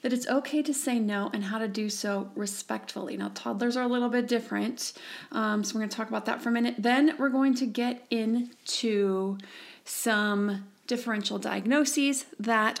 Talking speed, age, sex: 190 wpm, 30-49, female